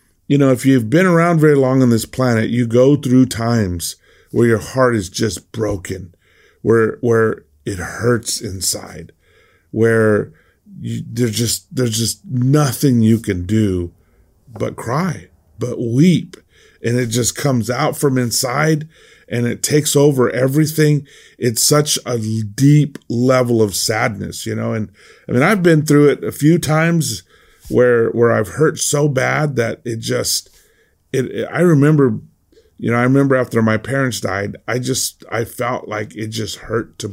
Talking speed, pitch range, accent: 165 wpm, 110-135 Hz, American